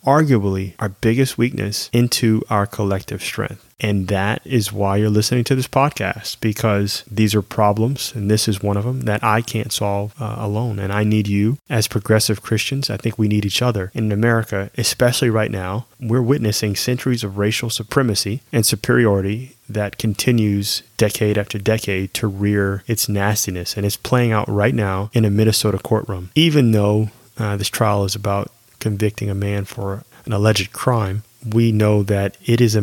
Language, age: English, 30-49